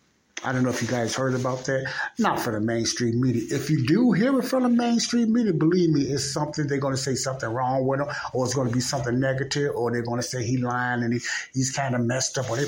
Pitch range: 115-140 Hz